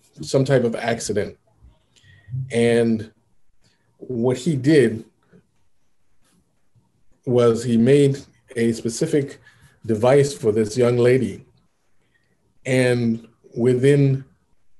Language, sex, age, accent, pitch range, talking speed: English, male, 40-59, American, 115-140 Hz, 80 wpm